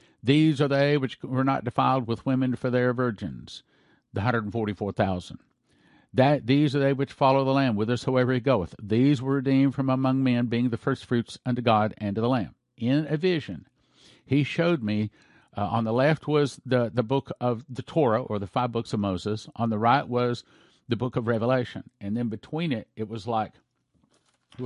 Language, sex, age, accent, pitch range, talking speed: English, male, 50-69, American, 110-140 Hz, 190 wpm